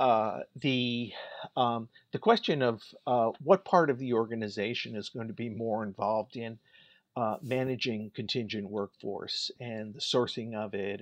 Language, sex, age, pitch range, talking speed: English, male, 50-69, 115-140 Hz, 150 wpm